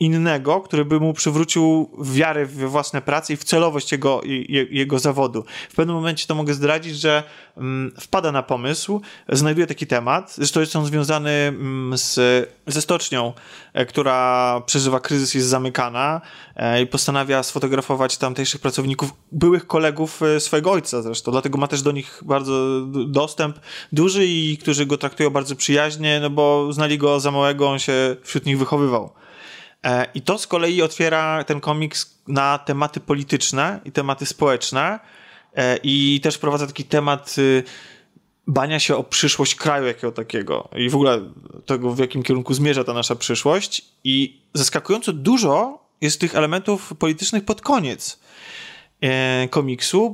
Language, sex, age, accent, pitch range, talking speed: Polish, male, 20-39, native, 135-155 Hz, 145 wpm